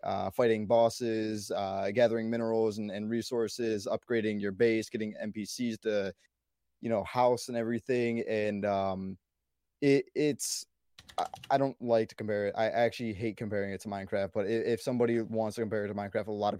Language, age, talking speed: English, 20-39, 175 wpm